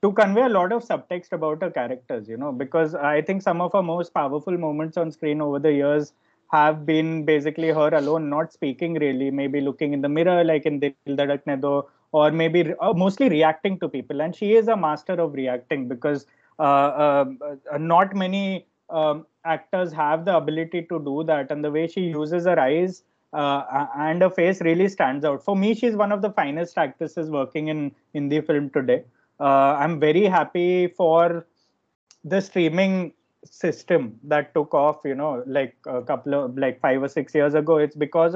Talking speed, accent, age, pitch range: 190 wpm, Indian, 20-39, 150-175 Hz